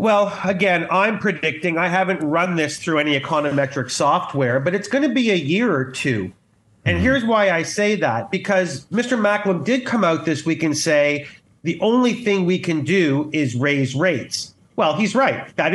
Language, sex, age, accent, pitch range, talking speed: English, male, 40-59, American, 145-195 Hz, 190 wpm